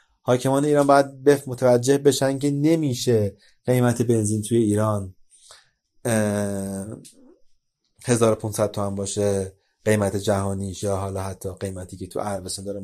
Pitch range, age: 100-130 Hz, 30-49